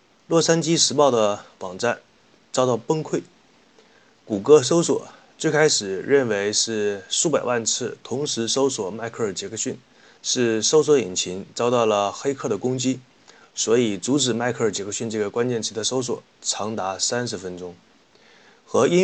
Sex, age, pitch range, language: male, 30-49, 110-145 Hz, Chinese